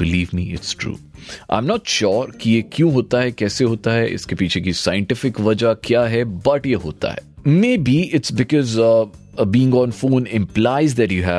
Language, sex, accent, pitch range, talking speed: Hindi, male, native, 95-140 Hz, 120 wpm